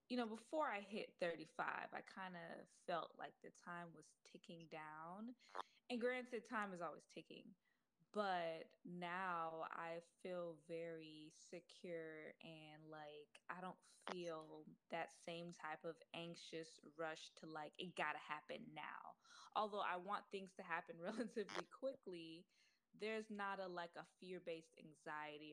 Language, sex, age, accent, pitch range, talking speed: English, female, 20-39, American, 160-205 Hz, 145 wpm